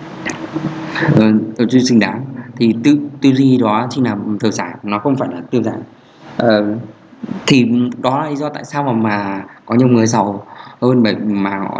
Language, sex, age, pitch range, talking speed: Vietnamese, male, 20-39, 105-130 Hz, 195 wpm